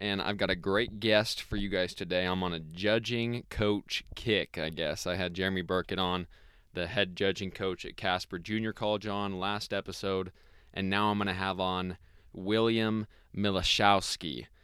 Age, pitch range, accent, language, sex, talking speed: 20-39, 85-100 Hz, American, English, male, 175 wpm